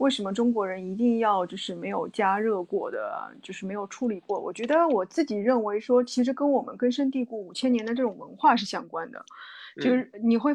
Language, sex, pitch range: Chinese, female, 210-255 Hz